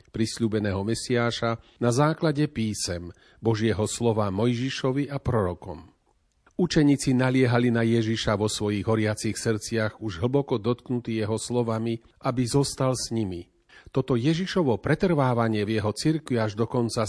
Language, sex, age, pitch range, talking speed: Slovak, male, 40-59, 110-135 Hz, 125 wpm